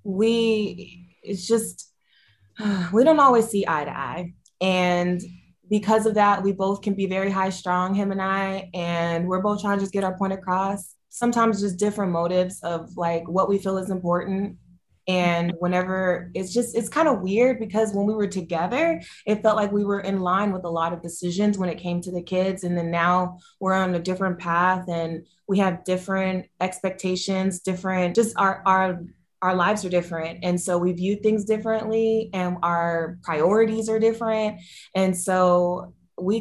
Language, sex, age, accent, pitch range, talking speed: English, female, 20-39, American, 175-200 Hz, 185 wpm